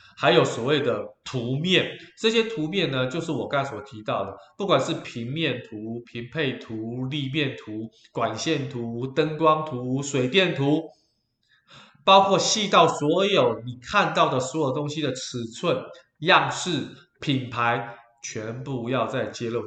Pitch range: 120-160 Hz